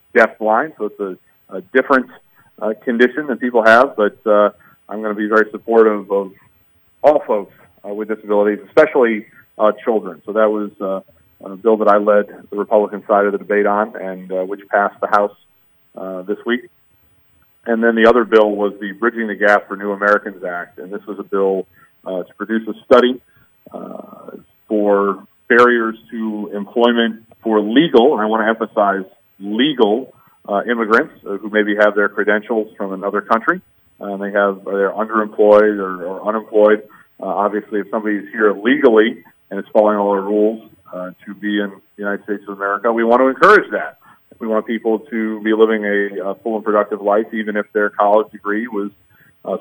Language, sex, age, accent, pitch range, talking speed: English, male, 40-59, American, 100-110 Hz, 190 wpm